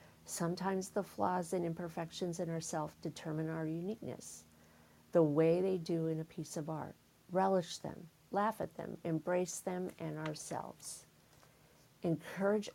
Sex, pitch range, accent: female, 155-175 Hz, American